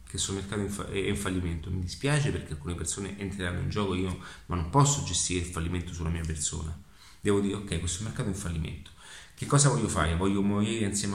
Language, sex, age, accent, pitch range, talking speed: Italian, male, 30-49, native, 90-110 Hz, 205 wpm